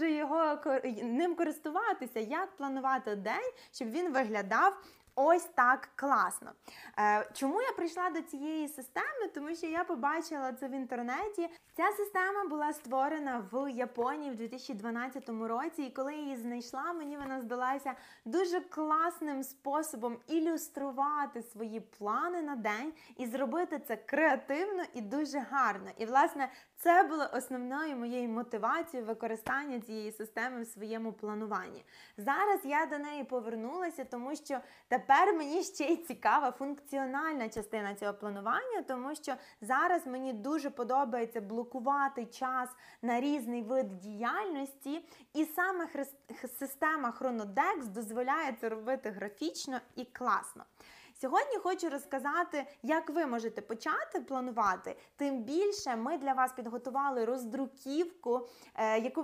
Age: 20-39